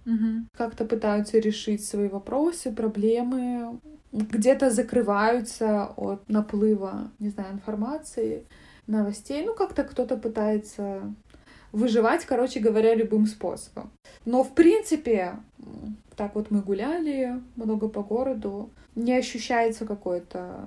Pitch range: 205-245 Hz